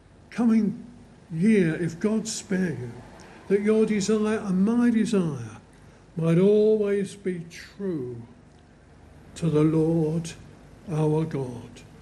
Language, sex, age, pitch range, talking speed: English, male, 60-79, 150-210 Hz, 105 wpm